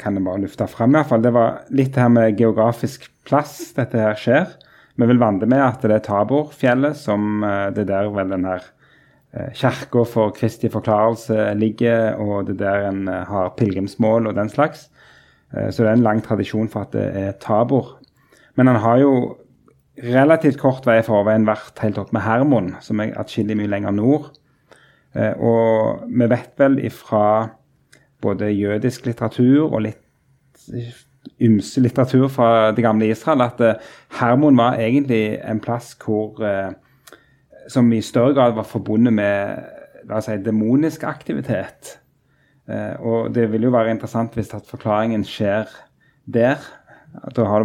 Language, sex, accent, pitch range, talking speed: English, male, Norwegian, 105-125 Hz, 165 wpm